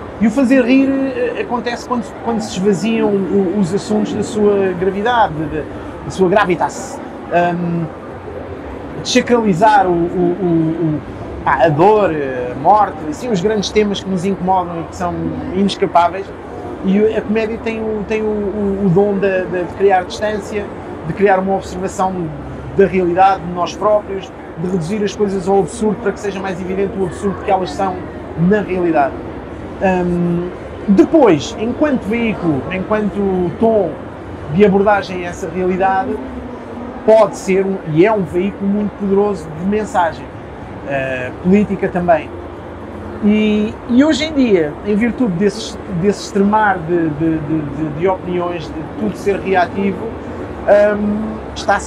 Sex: male